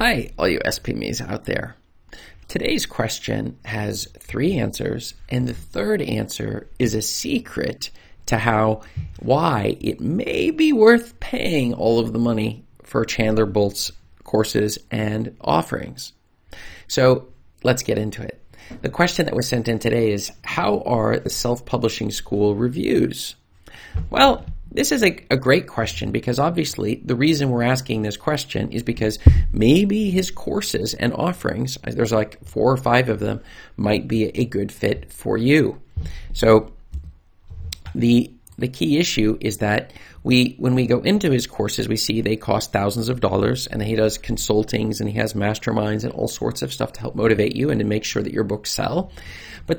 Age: 40-59